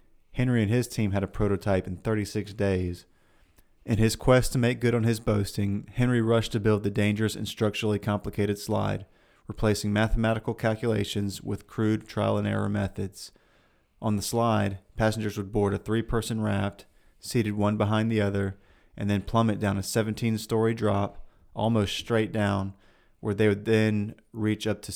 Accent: American